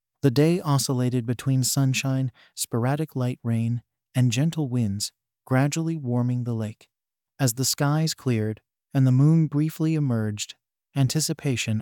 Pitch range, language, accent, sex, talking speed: 120-145 Hz, English, American, male, 125 wpm